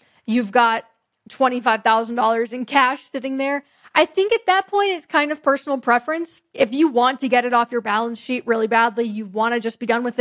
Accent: American